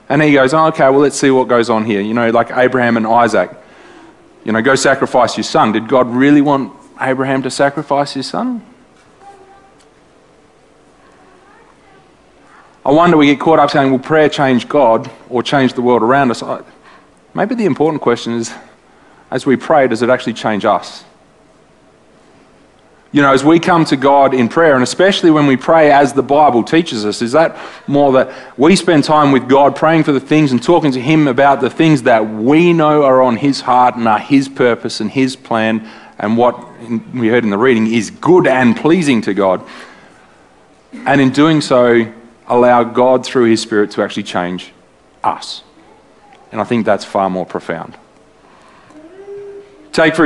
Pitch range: 115-150 Hz